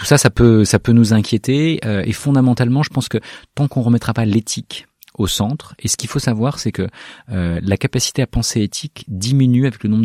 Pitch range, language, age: 95-125 Hz, French, 30-49